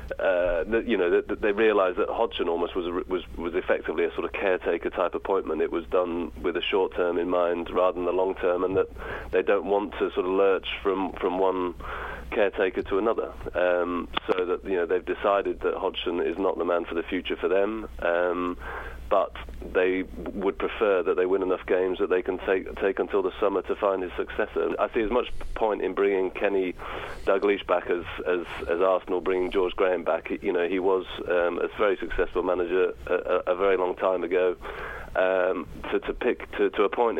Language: English